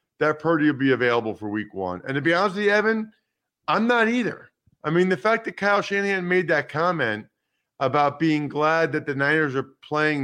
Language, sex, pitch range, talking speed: English, male, 120-150 Hz, 210 wpm